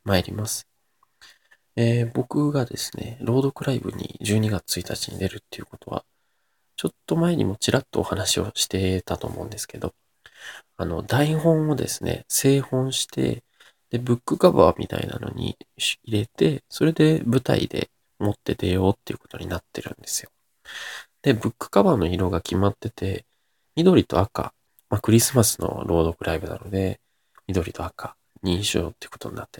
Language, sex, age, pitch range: Japanese, male, 20-39, 95-125 Hz